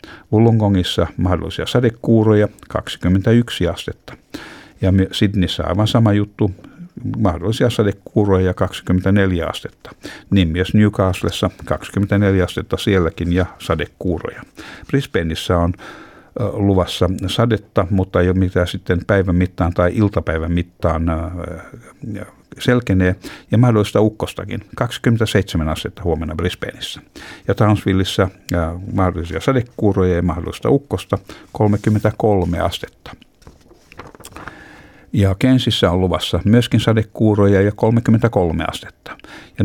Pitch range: 90-110 Hz